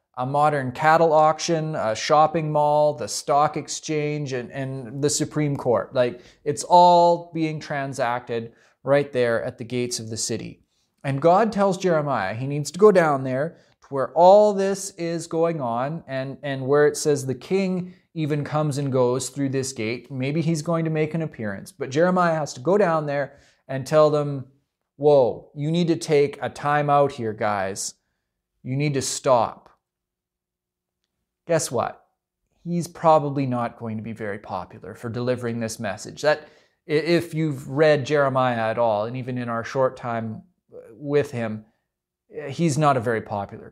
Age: 30-49